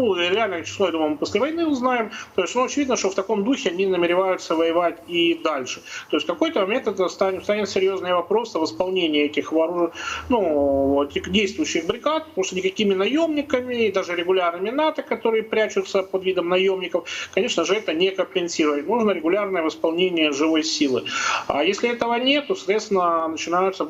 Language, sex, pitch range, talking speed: Russian, male, 160-220 Hz, 170 wpm